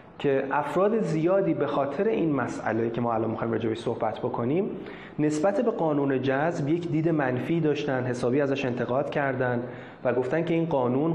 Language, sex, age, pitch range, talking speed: Persian, male, 30-49, 125-160 Hz, 165 wpm